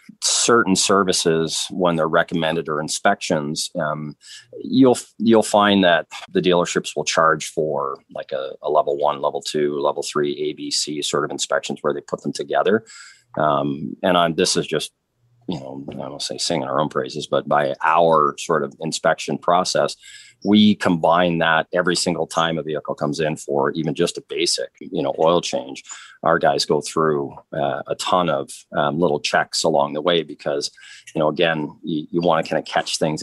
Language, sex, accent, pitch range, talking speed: English, male, American, 80-115 Hz, 185 wpm